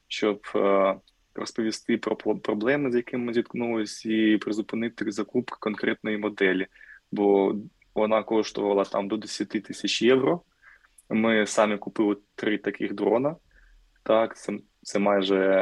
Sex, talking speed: male, 120 wpm